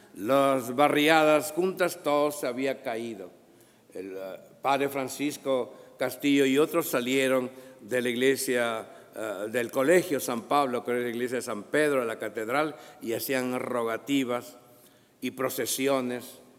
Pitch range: 125-165 Hz